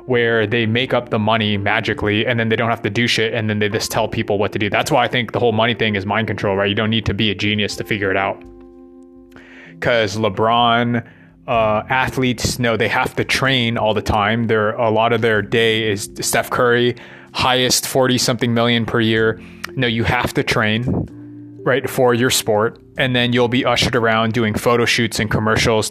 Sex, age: male, 20-39